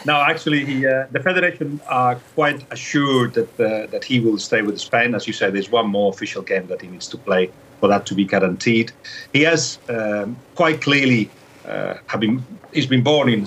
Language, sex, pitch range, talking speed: English, male, 105-145 Hz, 205 wpm